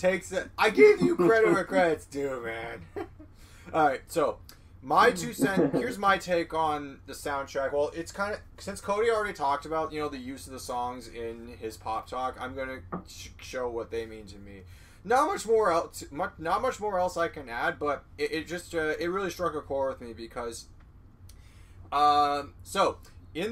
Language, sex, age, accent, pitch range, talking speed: English, male, 20-39, American, 115-165 Hz, 200 wpm